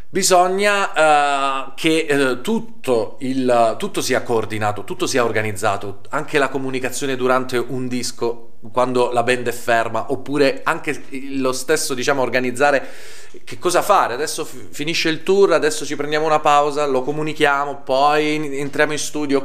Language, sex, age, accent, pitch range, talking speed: Italian, male, 30-49, native, 130-175 Hz, 150 wpm